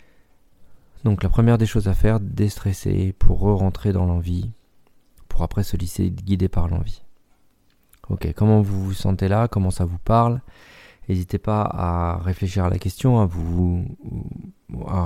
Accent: French